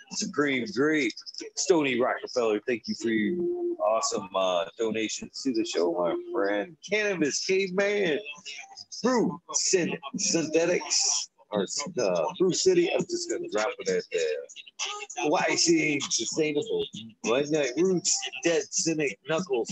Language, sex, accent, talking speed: English, male, American, 120 wpm